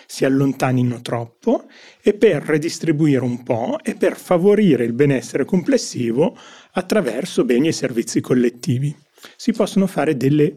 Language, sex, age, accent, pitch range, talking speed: Italian, male, 30-49, native, 130-215 Hz, 130 wpm